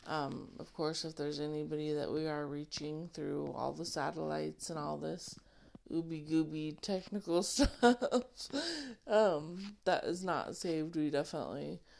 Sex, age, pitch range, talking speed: female, 30-49, 155-185 Hz, 140 wpm